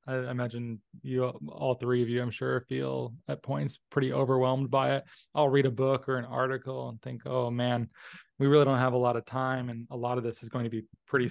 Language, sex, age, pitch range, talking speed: English, male, 20-39, 125-145 Hz, 240 wpm